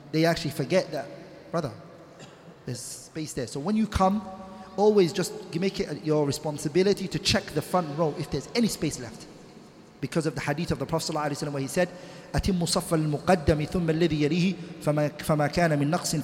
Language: English